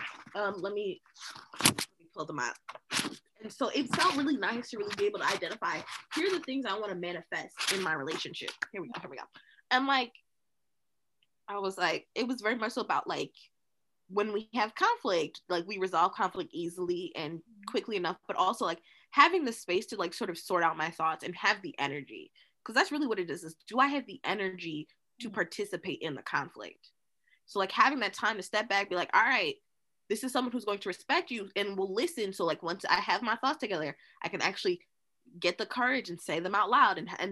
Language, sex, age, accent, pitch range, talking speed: English, female, 20-39, American, 175-250 Hz, 220 wpm